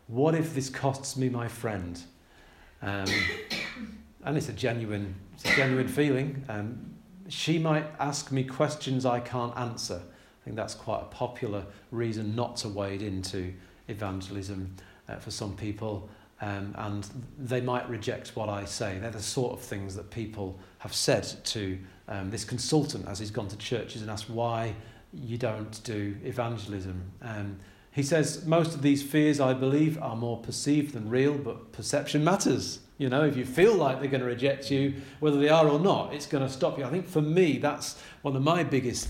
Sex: male